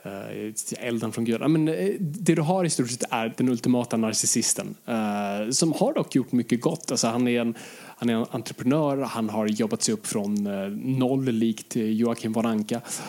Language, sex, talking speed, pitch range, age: Swedish, male, 175 wpm, 115-155 Hz, 20-39